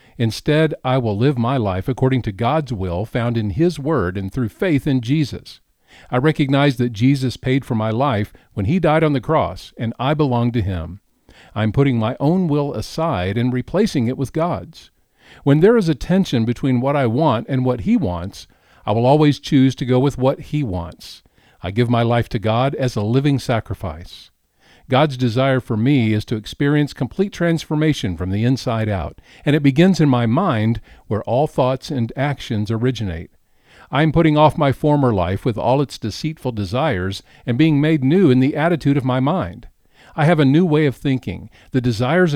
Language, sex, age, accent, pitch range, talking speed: English, male, 50-69, American, 110-145 Hz, 195 wpm